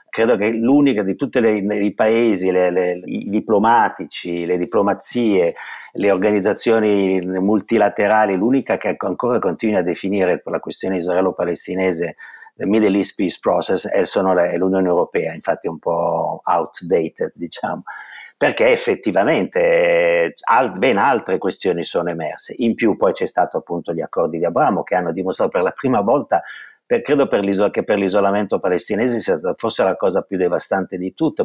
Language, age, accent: Italian, 50-69, native